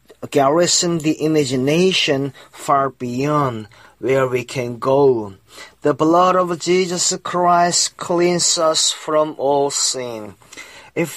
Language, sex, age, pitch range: Korean, male, 30-49, 135-165 Hz